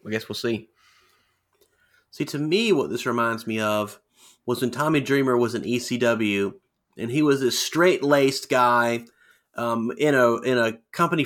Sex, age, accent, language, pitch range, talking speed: male, 30-49, American, English, 120-170 Hz, 165 wpm